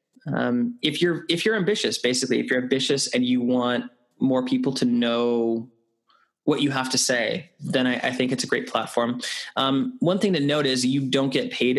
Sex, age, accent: male, 20-39, American